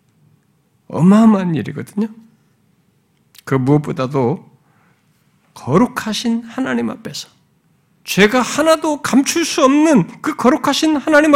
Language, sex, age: Korean, male, 50-69